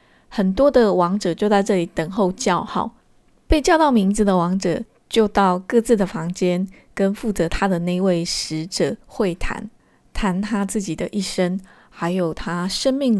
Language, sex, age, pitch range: Chinese, female, 20-39, 175-215 Hz